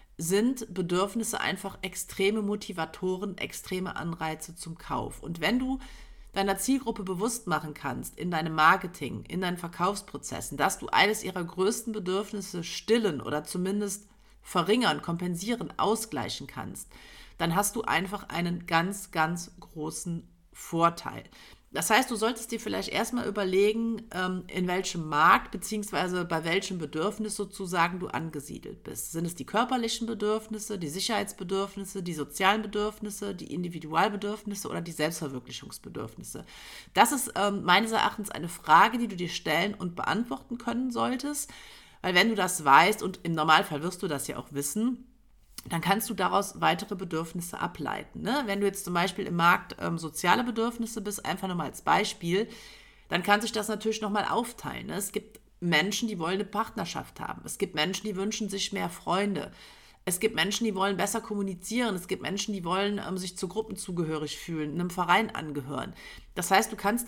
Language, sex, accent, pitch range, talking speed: German, female, German, 170-215 Hz, 160 wpm